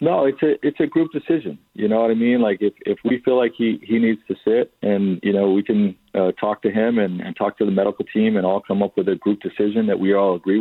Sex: male